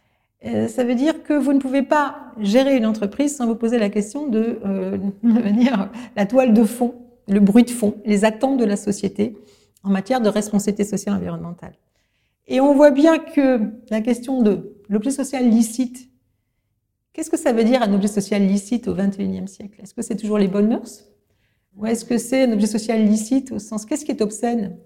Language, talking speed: French, 205 wpm